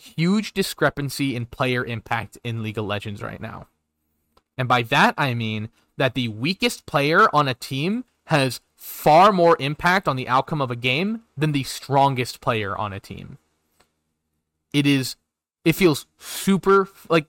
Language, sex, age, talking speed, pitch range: English, male, 20-39, 160 wpm, 120-160 Hz